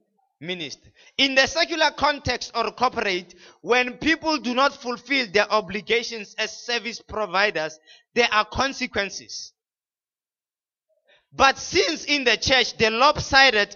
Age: 30-49